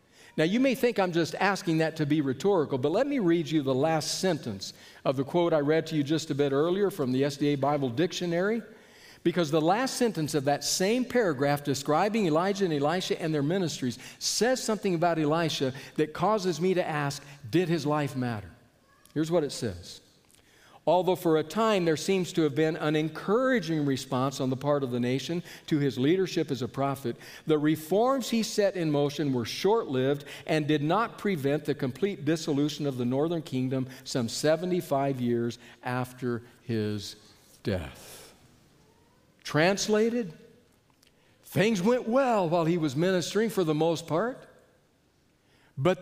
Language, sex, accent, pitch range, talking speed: English, male, American, 135-185 Hz, 170 wpm